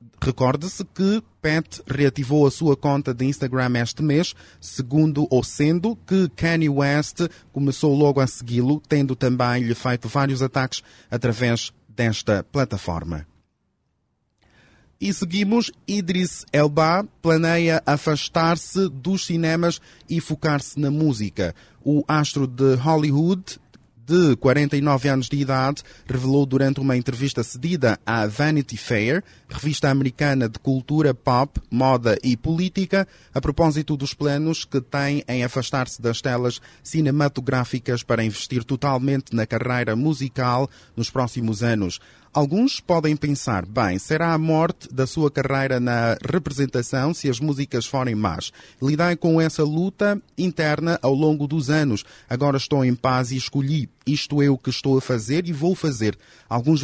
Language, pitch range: Portuguese, 125-155 Hz